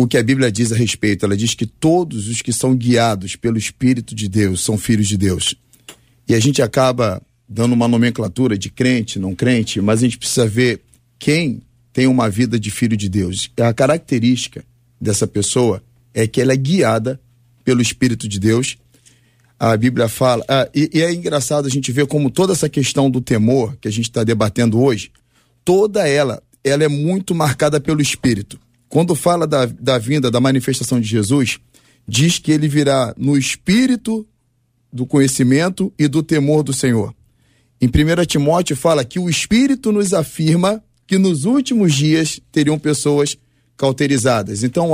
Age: 40-59